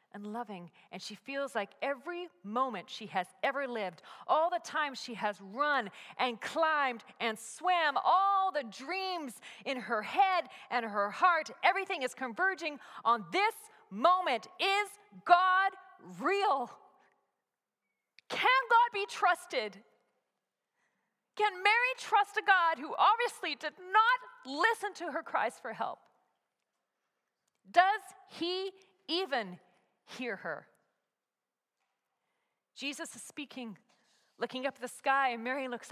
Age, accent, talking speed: 40-59, American, 125 wpm